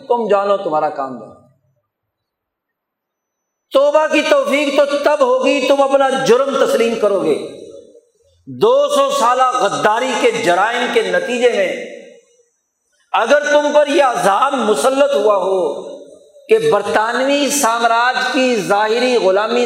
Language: Urdu